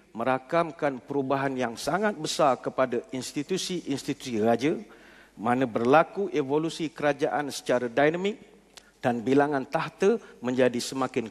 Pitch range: 135-175 Hz